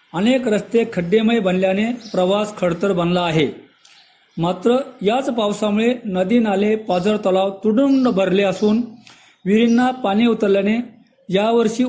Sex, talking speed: male, 110 wpm